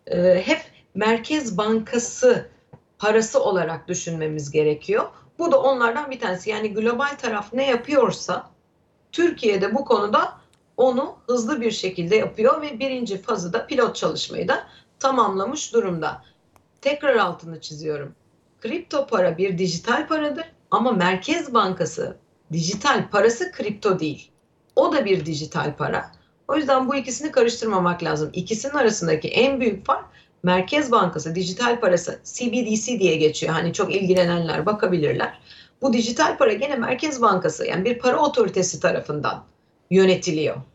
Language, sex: Turkish, female